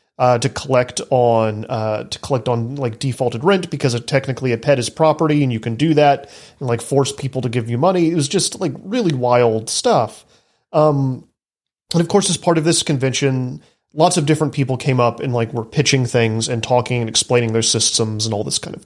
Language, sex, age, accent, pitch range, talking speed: English, male, 30-49, American, 120-155 Hz, 220 wpm